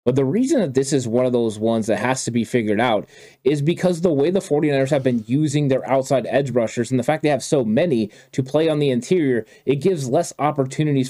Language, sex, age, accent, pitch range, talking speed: English, male, 20-39, American, 130-155 Hz, 245 wpm